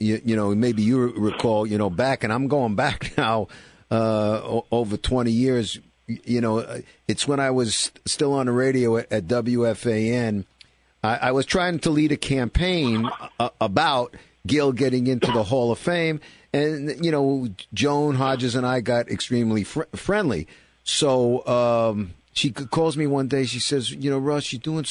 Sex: male